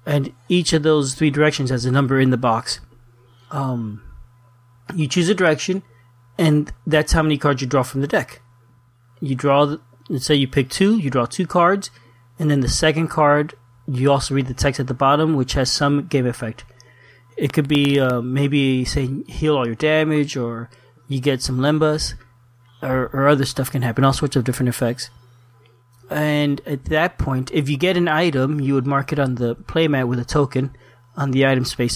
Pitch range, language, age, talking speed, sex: 125-150 Hz, English, 30-49, 200 wpm, male